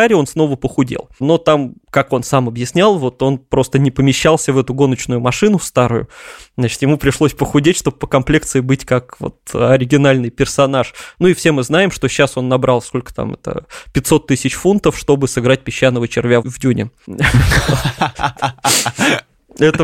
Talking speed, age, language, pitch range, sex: 160 wpm, 20-39, Russian, 135-170 Hz, male